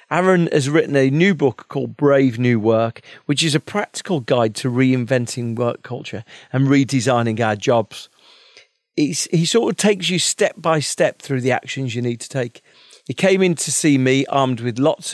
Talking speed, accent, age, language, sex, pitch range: 185 wpm, British, 40-59, English, male, 120-155 Hz